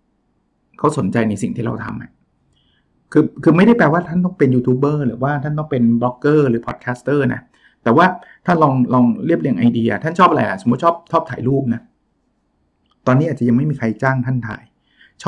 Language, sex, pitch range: Thai, male, 125-150 Hz